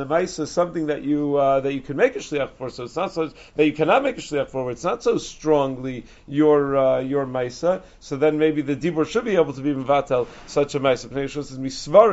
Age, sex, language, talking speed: 40-59, male, English, 260 wpm